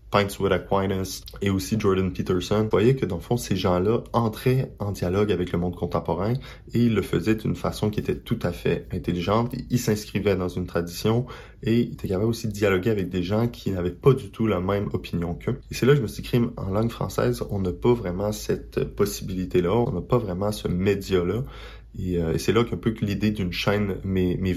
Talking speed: 225 wpm